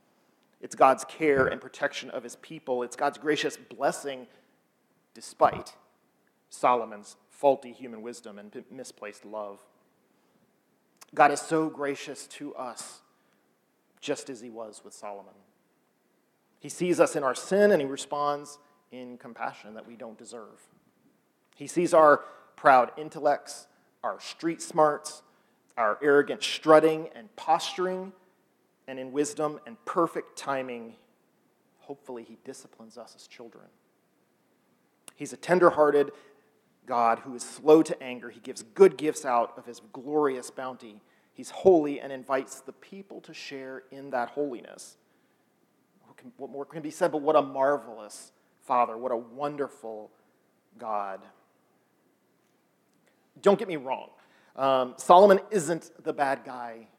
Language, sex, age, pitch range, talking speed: English, male, 40-59, 125-155 Hz, 130 wpm